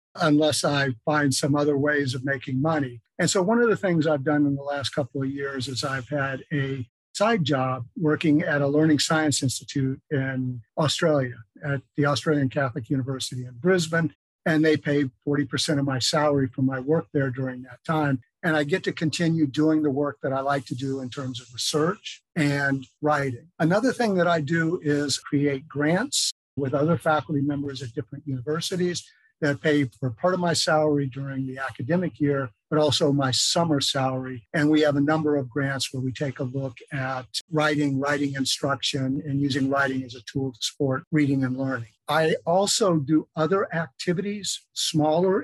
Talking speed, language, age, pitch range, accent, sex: 185 wpm, English, 50-69, 135-160 Hz, American, male